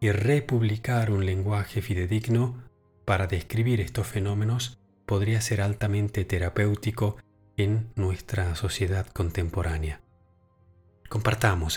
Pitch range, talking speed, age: 100-125 Hz, 90 wpm, 40-59